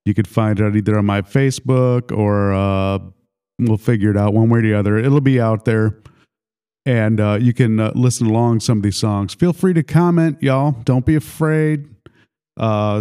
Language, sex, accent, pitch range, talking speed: English, male, American, 105-125 Hz, 205 wpm